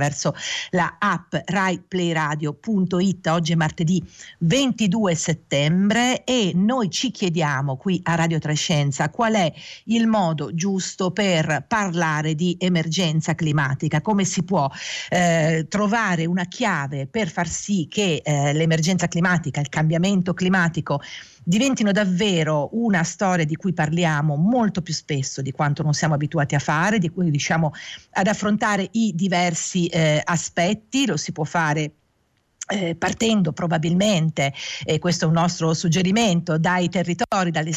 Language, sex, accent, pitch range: Italian, female, native, 155-195 Hz